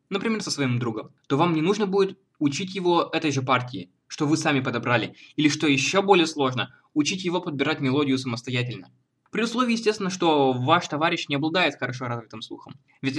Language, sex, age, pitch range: Russian, male, 20-39, 130-180 Hz